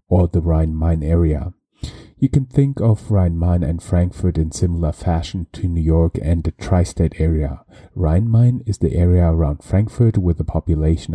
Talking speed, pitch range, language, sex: 160 wpm, 80-95 Hz, English, male